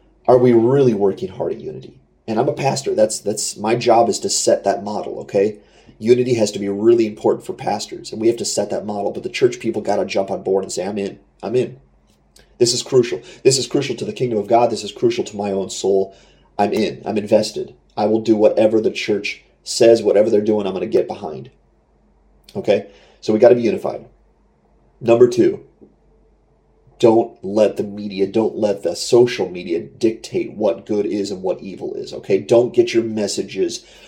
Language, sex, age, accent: English, male, 30-49, American